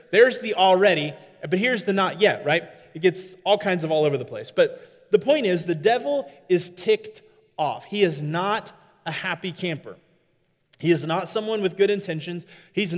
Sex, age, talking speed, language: male, 30-49, 190 wpm, English